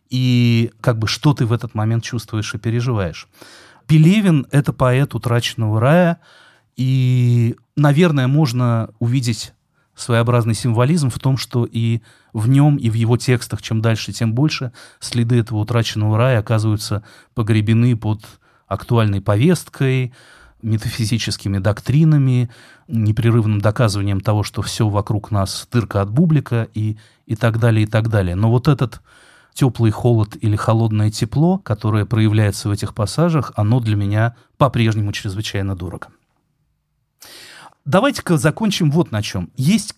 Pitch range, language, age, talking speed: 110-135 Hz, Russian, 30-49, 135 wpm